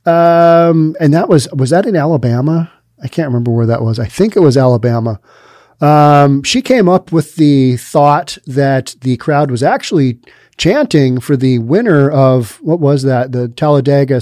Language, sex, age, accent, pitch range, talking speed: English, male, 40-59, American, 125-175 Hz, 175 wpm